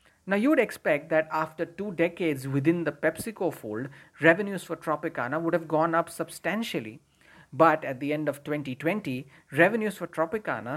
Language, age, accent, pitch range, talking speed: English, 50-69, Indian, 150-180 Hz, 155 wpm